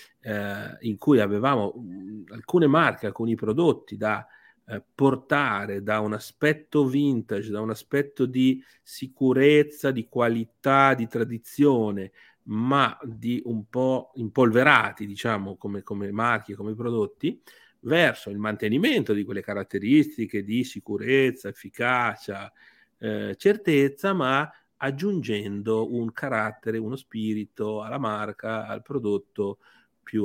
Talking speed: 110 wpm